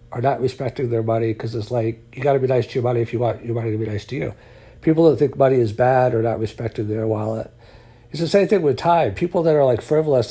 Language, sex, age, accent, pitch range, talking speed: English, male, 60-79, American, 115-130 Hz, 280 wpm